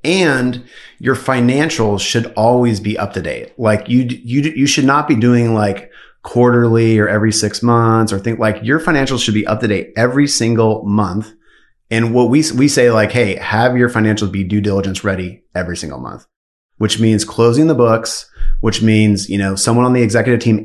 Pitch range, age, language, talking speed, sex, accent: 105-125 Hz, 30-49, English, 195 wpm, male, American